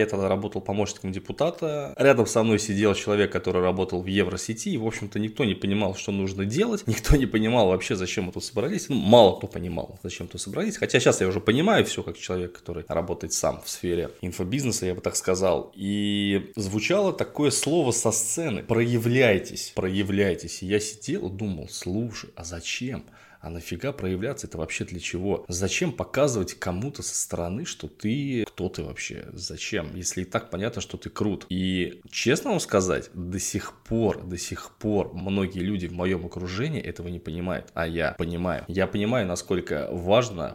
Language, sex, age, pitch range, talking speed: Russian, male, 20-39, 90-110 Hz, 180 wpm